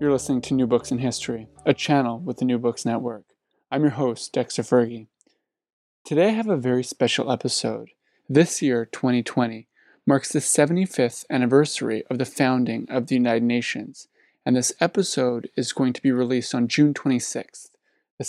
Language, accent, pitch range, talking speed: English, American, 120-145 Hz, 170 wpm